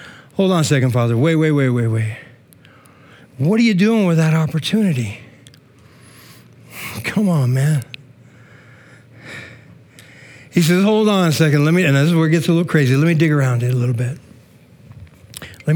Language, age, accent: English, 60-79, American